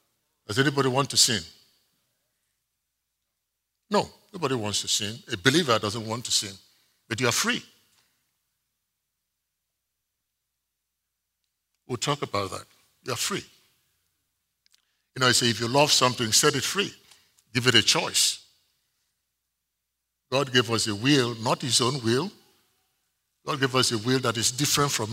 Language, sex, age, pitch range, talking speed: English, male, 60-79, 105-135 Hz, 145 wpm